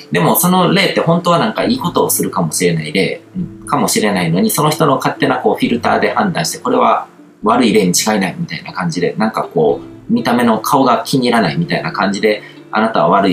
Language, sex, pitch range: Japanese, male, 105-170 Hz